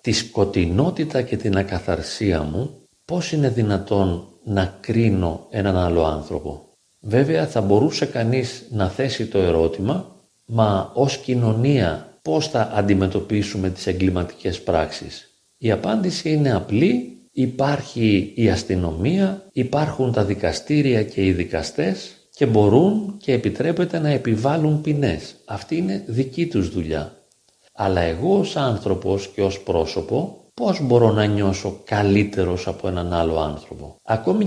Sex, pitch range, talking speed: male, 95-130 Hz, 125 wpm